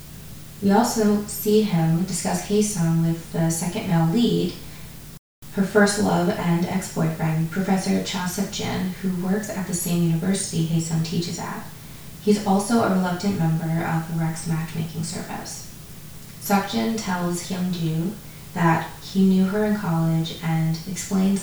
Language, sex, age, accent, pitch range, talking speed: English, female, 20-39, American, 165-195 Hz, 140 wpm